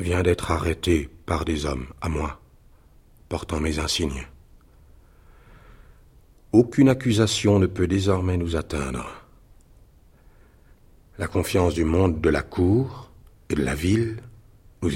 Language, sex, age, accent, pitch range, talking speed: French, male, 60-79, French, 80-100 Hz, 120 wpm